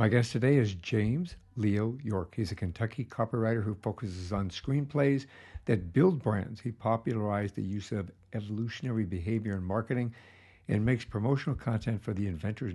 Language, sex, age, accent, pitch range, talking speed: English, male, 60-79, American, 95-120 Hz, 160 wpm